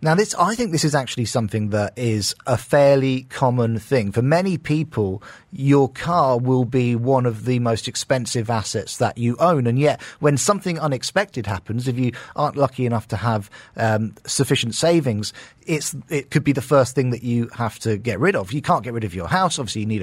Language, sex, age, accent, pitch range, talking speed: English, male, 40-59, British, 120-165 Hz, 210 wpm